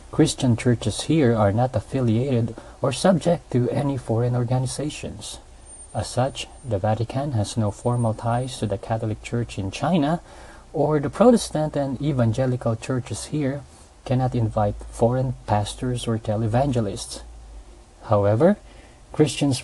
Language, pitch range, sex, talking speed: English, 110-130 Hz, male, 125 wpm